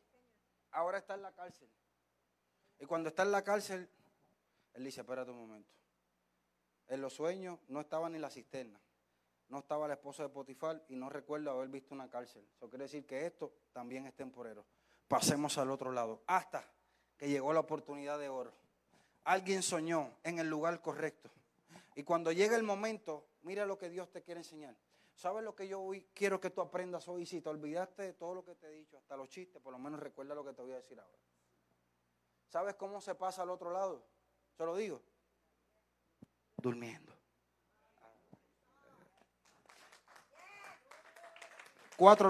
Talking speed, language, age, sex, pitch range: 170 wpm, Spanish, 30-49, male, 135-190 Hz